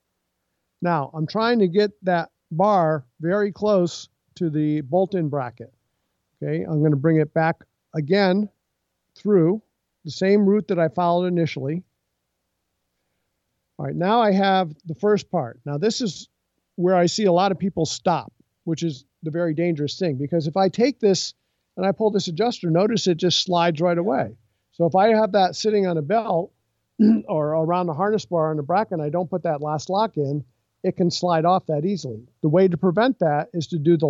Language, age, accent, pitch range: English, 50-69, American, 155-195 Hz